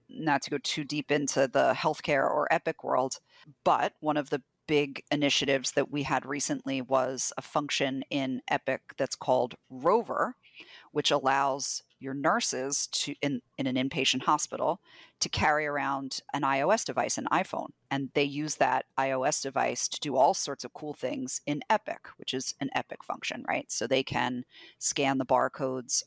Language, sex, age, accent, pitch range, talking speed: English, female, 40-59, American, 130-150 Hz, 170 wpm